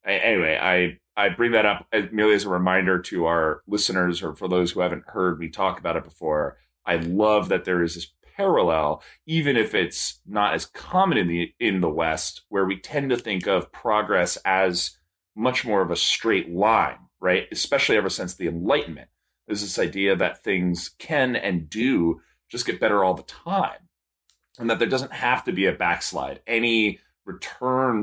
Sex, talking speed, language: male, 185 wpm, English